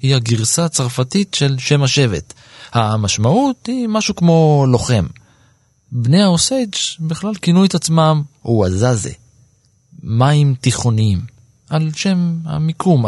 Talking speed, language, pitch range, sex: 105 wpm, Hebrew, 110-150 Hz, male